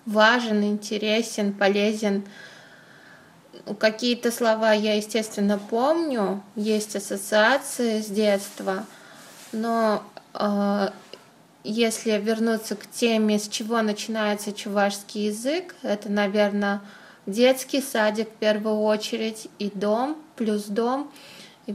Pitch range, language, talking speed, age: 210-235 Hz, Russian, 100 wpm, 20-39